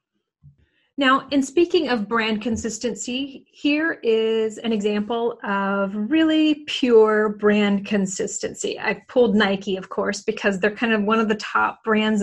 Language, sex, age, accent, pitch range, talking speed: English, female, 30-49, American, 205-250 Hz, 140 wpm